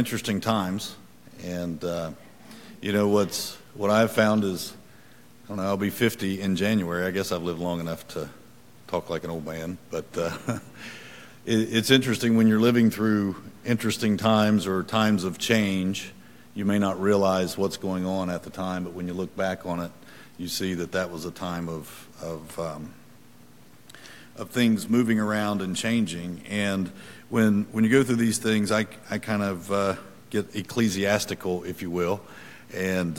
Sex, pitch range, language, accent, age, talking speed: male, 90-110 Hz, English, American, 50-69, 175 wpm